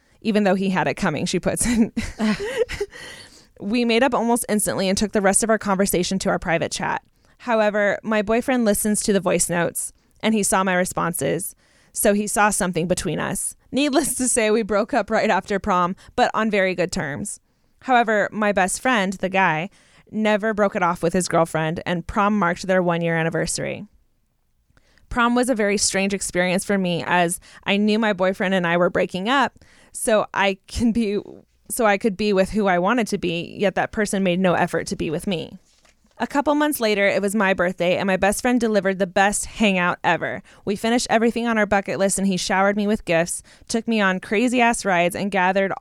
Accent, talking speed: American, 205 wpm